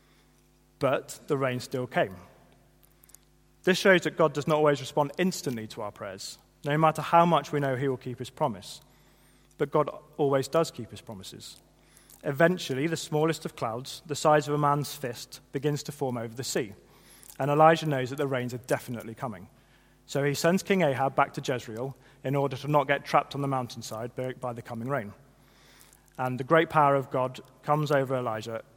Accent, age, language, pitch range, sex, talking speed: British, 30-49, English, 125-150 Hz, male, 190 wpm